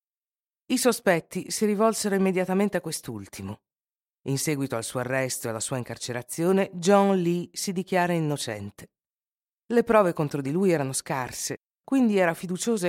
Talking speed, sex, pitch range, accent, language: 145 wpm, female, 140-195 Hz, native, Italian